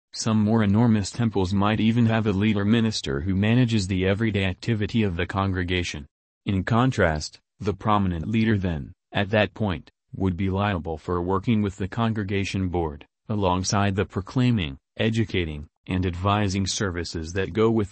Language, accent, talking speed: English, American, 150 wpm